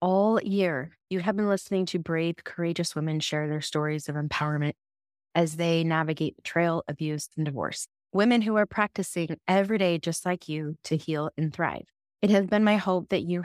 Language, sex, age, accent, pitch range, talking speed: English, female, 20-39, American, 160-195 Hz, 195 wpm